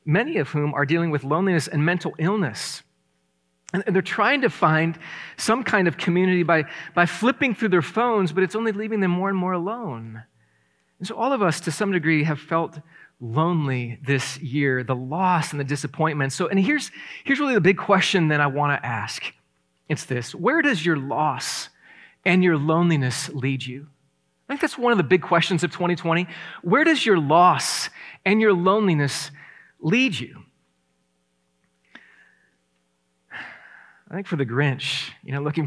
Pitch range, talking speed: 130-180 Hz, 175 wpm